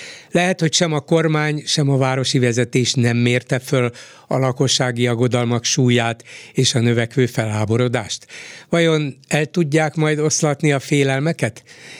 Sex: male